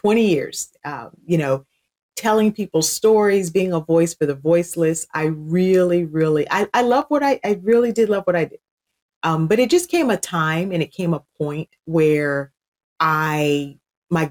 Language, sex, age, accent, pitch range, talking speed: English, female, 30-49, American, 150-185 Hz, 185 wpm